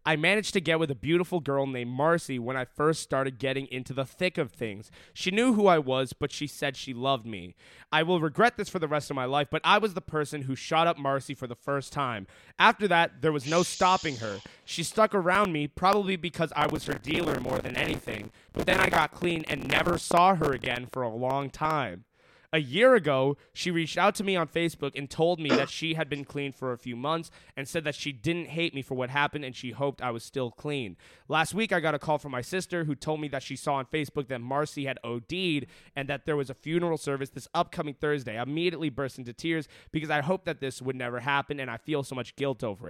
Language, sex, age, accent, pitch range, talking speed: English, male, 20-39, American, 130-165 Hz, 250 wpm